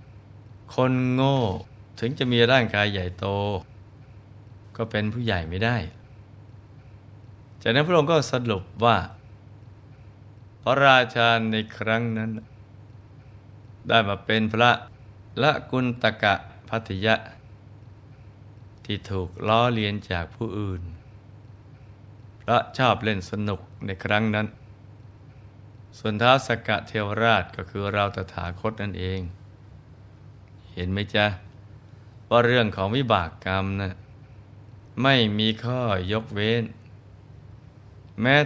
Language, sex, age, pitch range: Thai, male, 20-39, 105-115 Hz